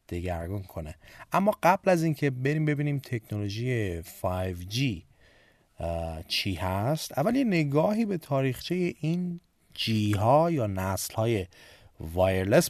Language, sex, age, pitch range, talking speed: Persian, male, 30-49, 100-155 Hz, 115 wpm